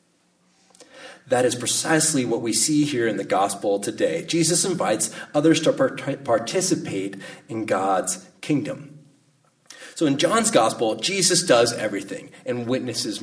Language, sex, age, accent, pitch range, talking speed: English, male, 30-49, American, 115-165 Hz, 130 wpm